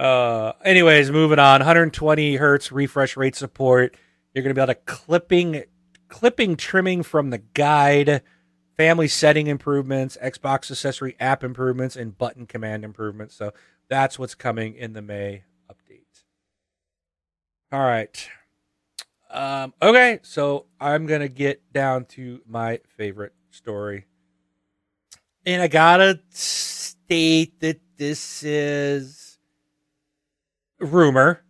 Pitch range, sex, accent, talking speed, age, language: 110-150 Hz, male, American, 115 wpm, 40-59, English